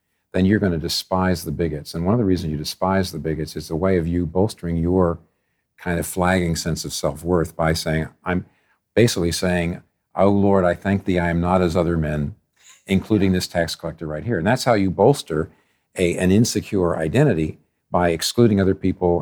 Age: 50-69